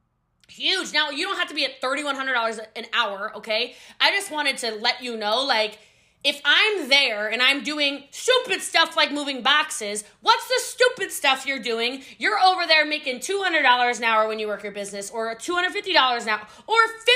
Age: 20-39